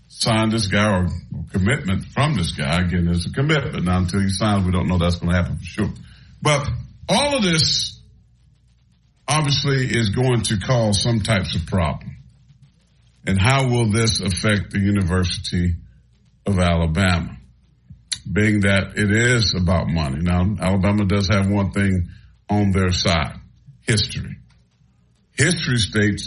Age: 50-69